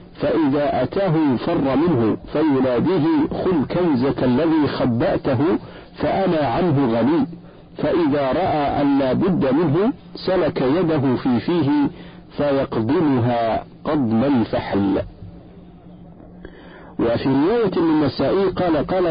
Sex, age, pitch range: male, 50-69, 130-175 Hz